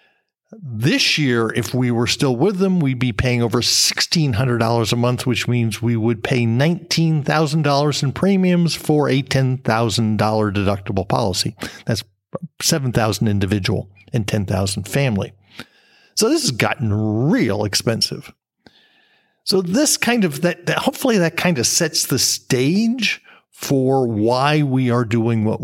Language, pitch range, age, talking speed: English, 115-165 Hz, 50-69, 155 wpm